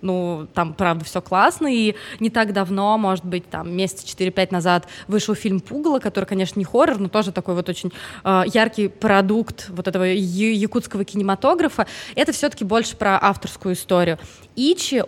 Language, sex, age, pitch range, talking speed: Russian, female, 20-39, 185-230 Hz, 165 wpm